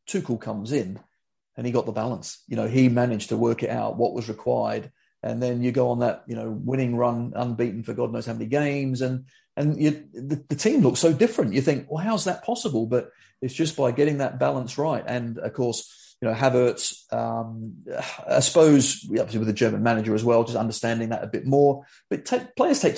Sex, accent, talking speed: male, British, 220 wpm